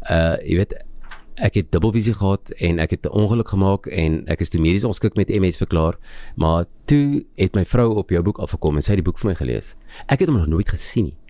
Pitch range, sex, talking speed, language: 85-115 Hz, male, 245 wpm, English